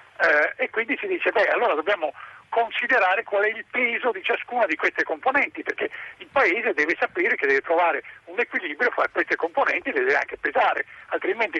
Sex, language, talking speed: male, Italian, 185 wpm